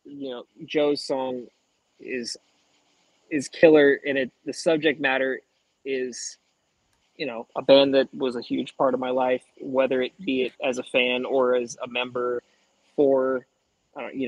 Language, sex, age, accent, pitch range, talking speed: English, male, 20-39, American, 125-150 Hz, 165 wpm